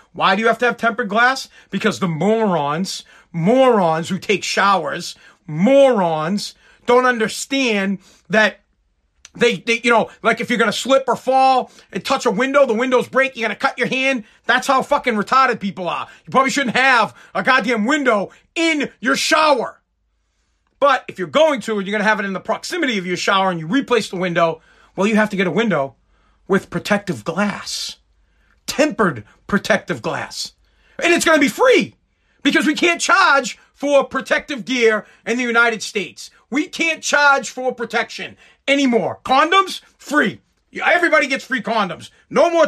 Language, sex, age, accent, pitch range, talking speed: English, male, 40-59, American, 200-265 Hz, 175 wpm